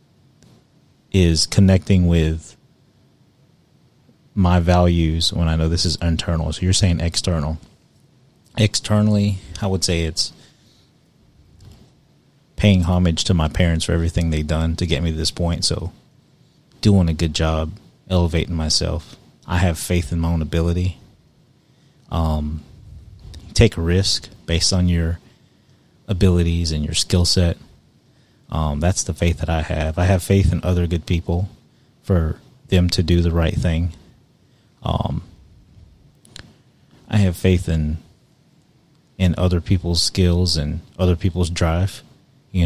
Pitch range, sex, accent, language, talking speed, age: 85-105 Hz, male, American, English, 135 wpm, 30-49